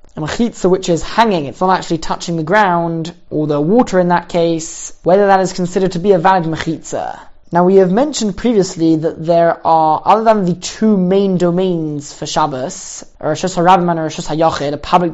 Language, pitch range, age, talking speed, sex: English, 165-195 Hz, 20-39, 195 wpm, male